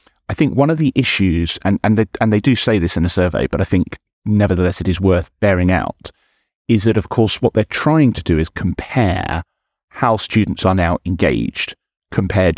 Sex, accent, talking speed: male, British, 205 wpm